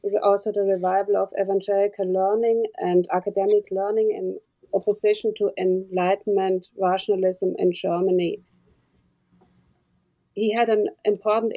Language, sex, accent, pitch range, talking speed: English, female, German, 195-220 Hz, 105 wpm